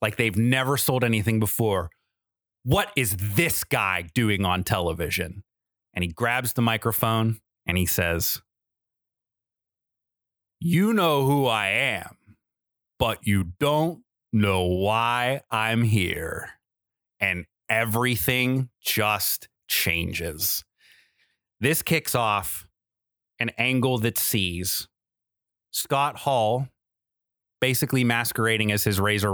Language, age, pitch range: English, 30-49, 100-125 Hz